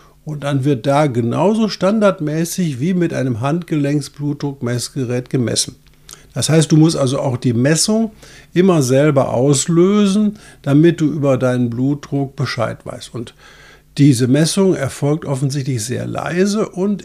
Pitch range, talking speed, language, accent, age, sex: 130-175 Hz, 130 wpm, German, German, 50-69, male